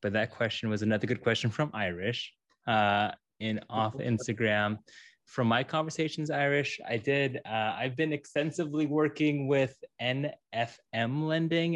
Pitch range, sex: 100-130 Hz, male